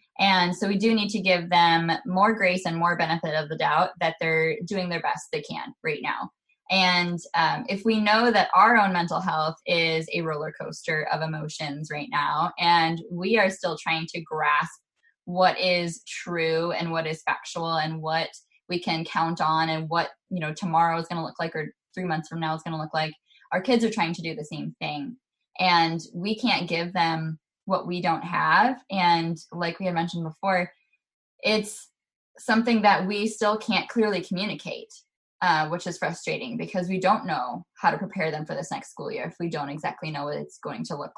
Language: English